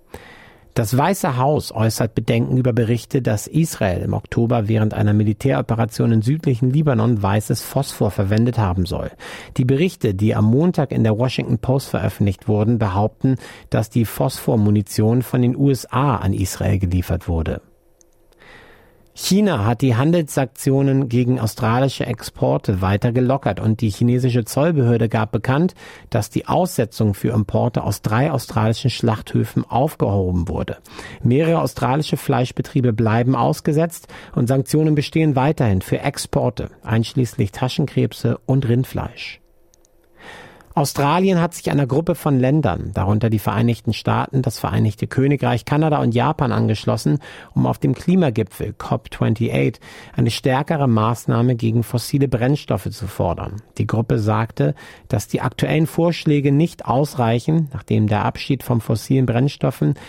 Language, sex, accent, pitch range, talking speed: German, male, German, 110-140 Hz, 130 wpm